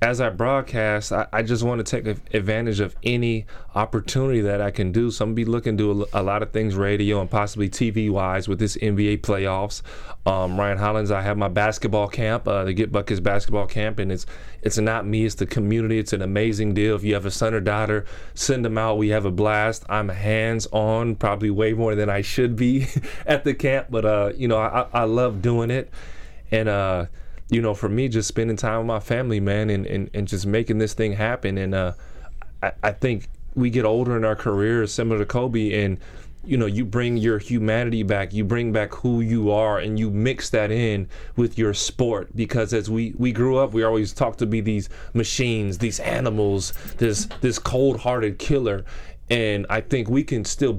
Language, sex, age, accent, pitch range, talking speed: English, male, 20-39, American, 105-115 Hz, 210 wpm